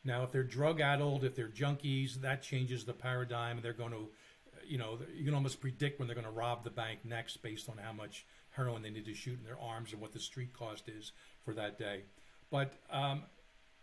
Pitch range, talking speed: 120-145 Hz, 220 wpm